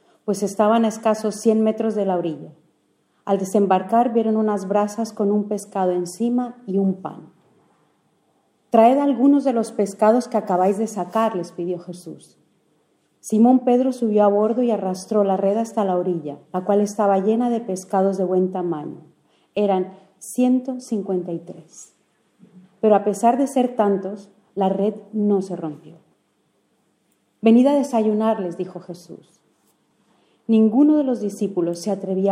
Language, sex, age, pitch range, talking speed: English, female, 40-59, 185-225 Hz, 150 wpm